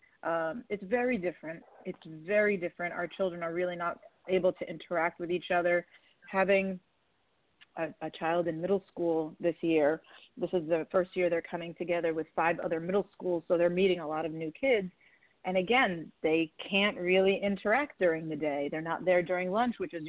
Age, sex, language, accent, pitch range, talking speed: 30-49, female, English, American, 165-195 Hz, 190 wpm